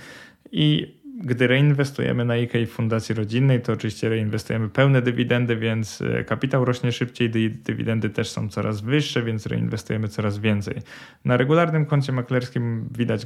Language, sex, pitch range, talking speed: Polish, male, 110-130 Hz, 145 wpm